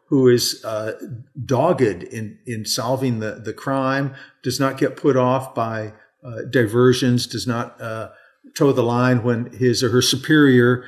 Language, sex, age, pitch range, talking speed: English, male, 50-69, 115-140 Hz, 160 wpm